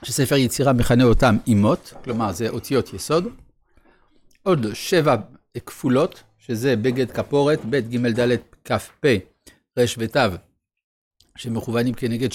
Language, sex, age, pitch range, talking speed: Hebrew, male, 60-79, 115-145 Hz, 110 wpm